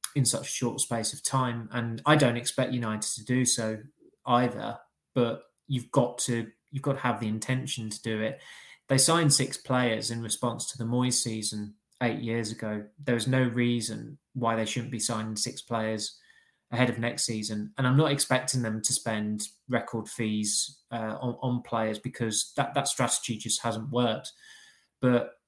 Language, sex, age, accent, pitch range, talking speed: English, male, 20-39, British, 115-125 Hz, 185 wpm